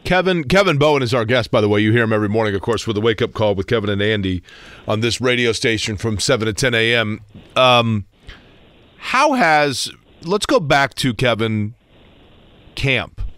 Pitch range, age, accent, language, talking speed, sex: 105-130 Hz, 40-59, American, English, 195 wpm, male